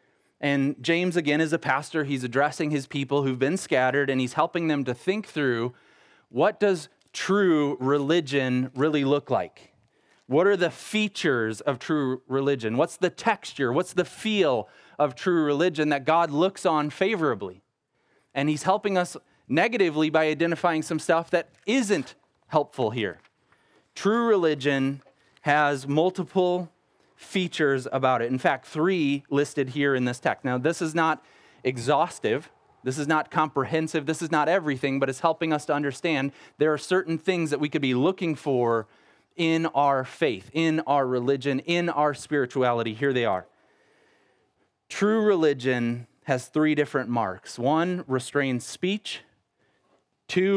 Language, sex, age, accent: English, male, 30-49, American